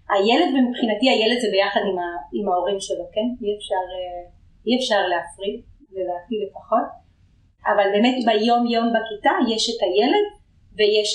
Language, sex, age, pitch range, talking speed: Hebrew, female, 30-49, 200-240 Hz, 140 wpm